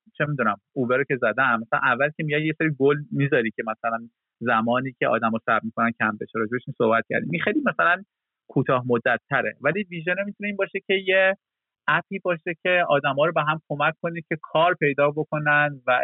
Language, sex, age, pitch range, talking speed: Persian, male, 30-49, 120-155 Hz, 200 wpm